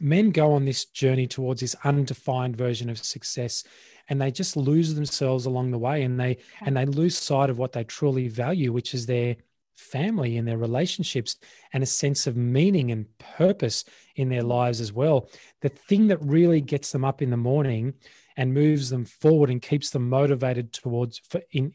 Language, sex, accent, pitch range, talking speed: English, male, Australian, 125-145 Hz, 195 wpm